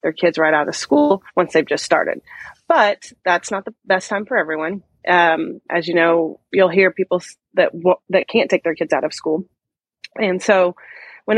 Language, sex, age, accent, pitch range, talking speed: English, female, 30-49, American, 170-210 Hz, 195 wpm